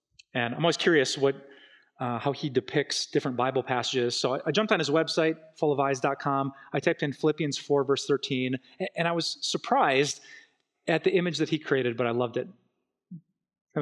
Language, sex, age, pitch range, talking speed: English, male, 30-49, 140-175 Hz, 180 wpm